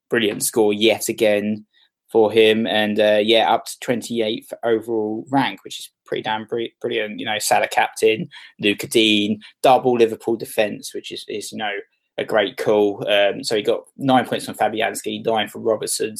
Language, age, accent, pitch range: English, 20-39, British, 105-130 Hz